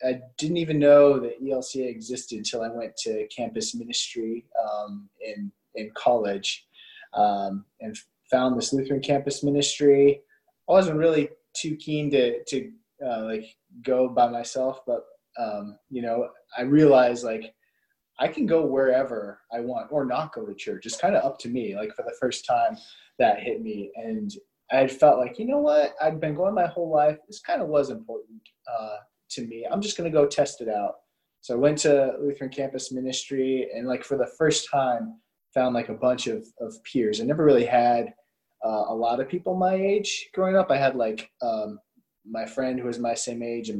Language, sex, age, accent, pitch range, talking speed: English, male, 20-39, American, 115-165 Hz, 195 wpm